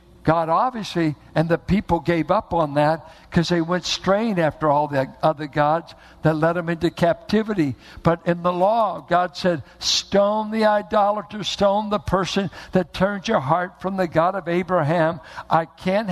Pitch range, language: 150-210 Hz, English